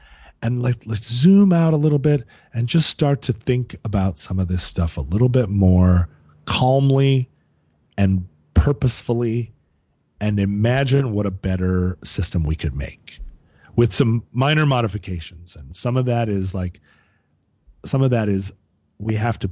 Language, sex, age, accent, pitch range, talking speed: English, male, 40-59, American, 90-125 Hz, 155 wpm